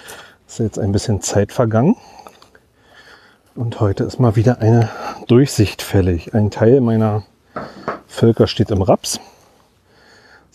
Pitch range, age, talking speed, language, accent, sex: 105-130 Hz, 40-59, 125 wpm, German, German, male